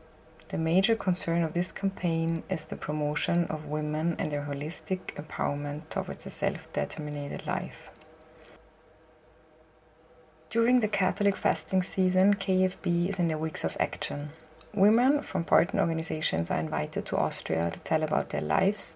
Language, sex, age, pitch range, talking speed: German, female, 30-49, 160-185 Hz, 140 wpm